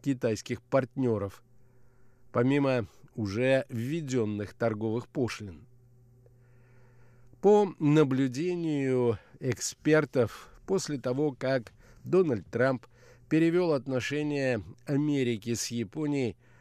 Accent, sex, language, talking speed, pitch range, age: native, male, Russian, 70 wpm, 120-140 Hz, 50-69